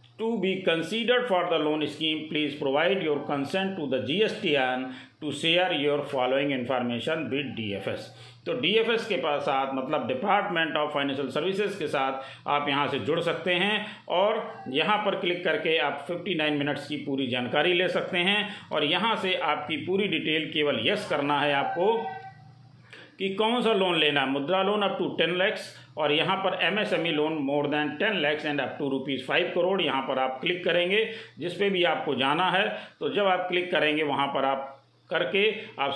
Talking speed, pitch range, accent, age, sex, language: 200 wpm, 140-190 Hz, native, 50-69, male, Hindi